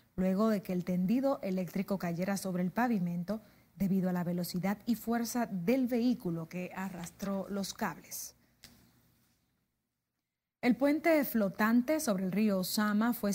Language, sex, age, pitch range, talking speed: Spanish, female, 30-49, 185-220 Hz, 135 wpm